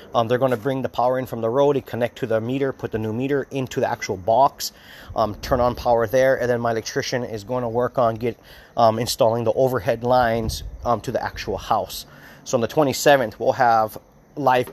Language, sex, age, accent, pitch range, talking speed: English, male, 30-49, American, 110-130 Hz, 225 wpm